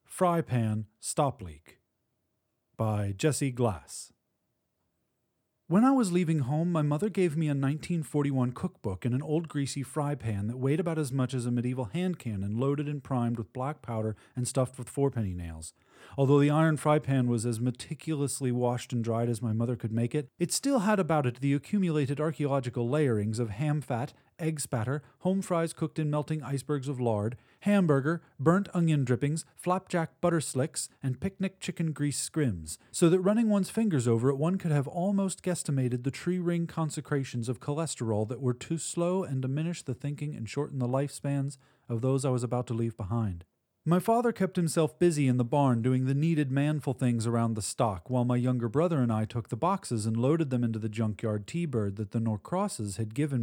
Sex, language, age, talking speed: male, English, 40-59, 195 wpm